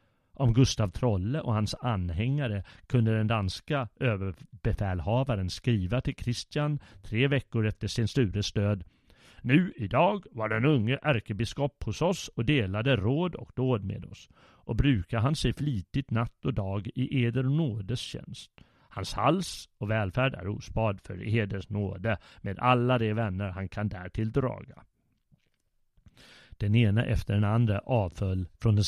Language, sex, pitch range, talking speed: Swedish, male, 105-135 Hz, 150 wpm